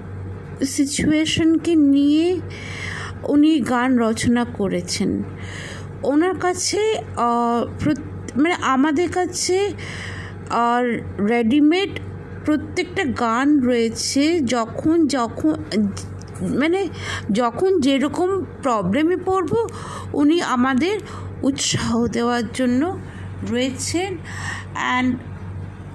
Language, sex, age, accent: English, female, 50-69, Indian